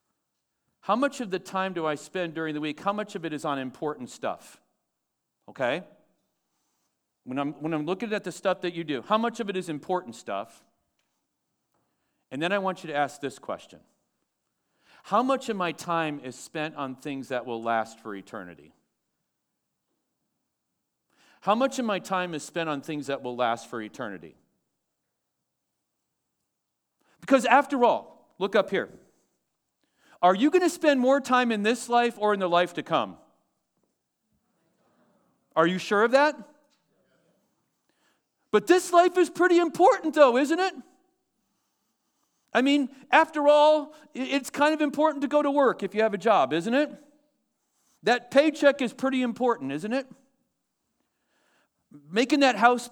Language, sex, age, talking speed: English, male, 40-59, 160 wpm